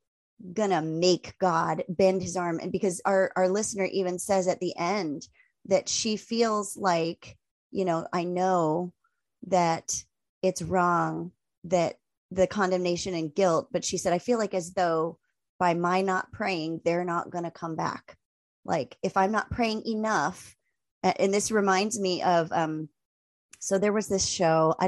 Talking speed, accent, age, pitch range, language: 160 wpm, American, 30-49, 170-195 Hz, English